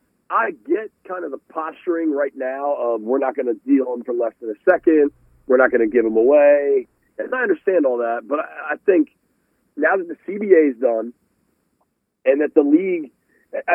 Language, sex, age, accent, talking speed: English, male, 40-59, American, 200 wpm